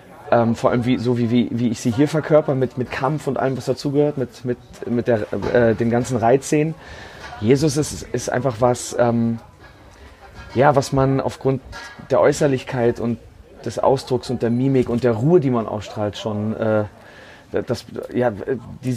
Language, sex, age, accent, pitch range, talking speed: German, male, 30-49, German, 120-140 Hz, 175 wpm